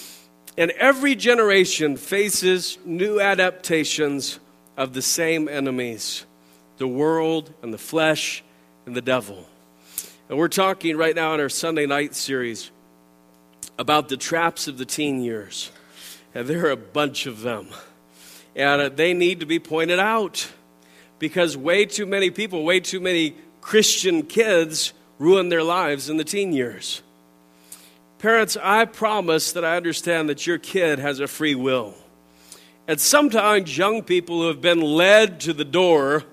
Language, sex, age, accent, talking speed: English, male, 50-69, American, 150 wpm